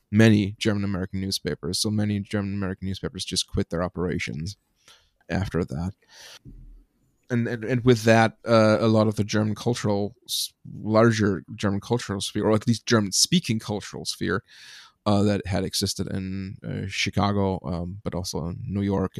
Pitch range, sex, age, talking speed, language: 95-115 Hz, male, 30-49, 160 wpm, English